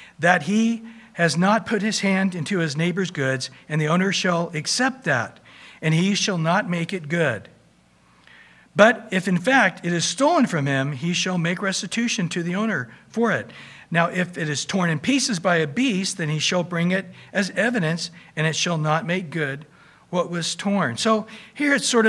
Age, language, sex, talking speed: 60-79, English, male, 195 wpm